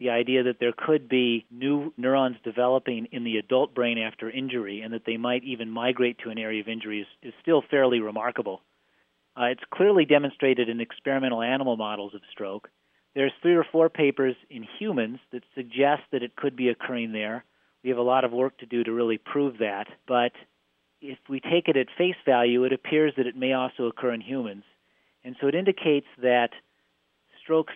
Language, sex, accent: English, male, American